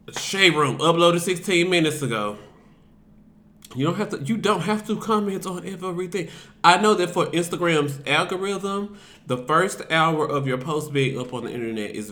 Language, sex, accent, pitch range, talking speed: English, male, American, 125-165 Hz, 175 wpm